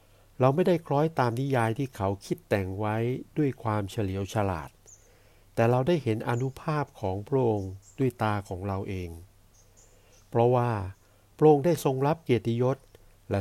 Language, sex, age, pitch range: Thai, male, 60-79, 100-125 Hz